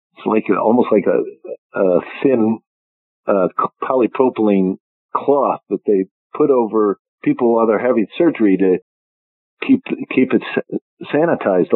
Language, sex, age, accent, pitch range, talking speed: English, male, 50-69, American, 95-125 Hz, 120 wpm